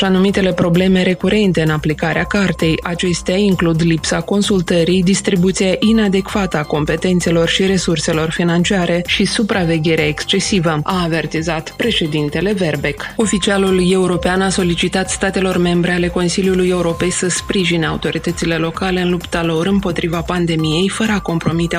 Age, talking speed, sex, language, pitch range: 20-39, 125 wpm, female, Romanian, 165-195 Hz